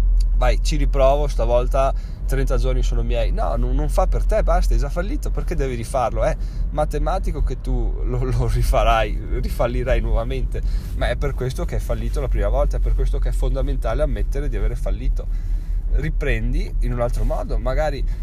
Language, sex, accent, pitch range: Italian, male, native, 100-135 Hz